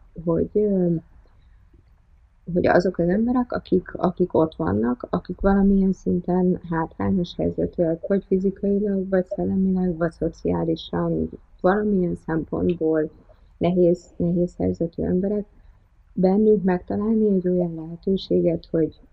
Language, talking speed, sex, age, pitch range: Hungarian, 100 wpm, female, 30-49, 150-185 Hz